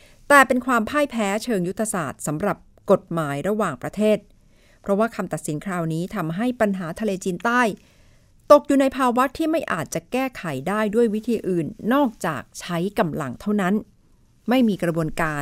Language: Thai